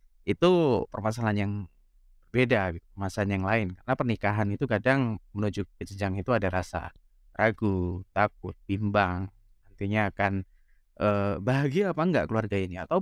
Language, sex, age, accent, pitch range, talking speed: Indonesian, male, 20-39, native, 95-155 Hz, 130 wpm